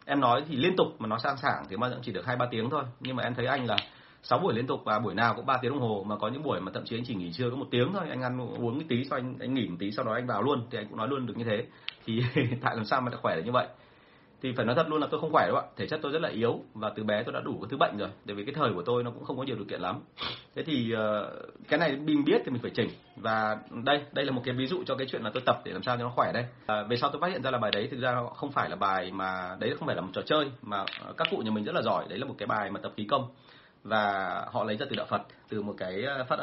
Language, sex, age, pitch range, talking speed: Vietnamese, male, 30-49, 105-130 Hz, 345 wpm